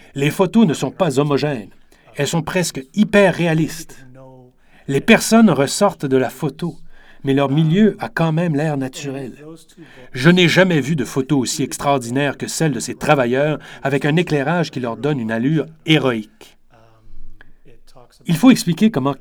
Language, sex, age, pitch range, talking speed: French, male, 30-49, 130-180 Hz, 160 wpm